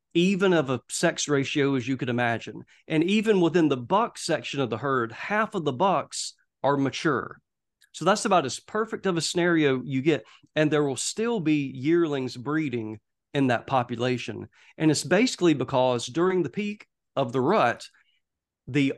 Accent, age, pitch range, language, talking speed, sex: American, 40-59, 130-170 Hz, English, 175 wpm, male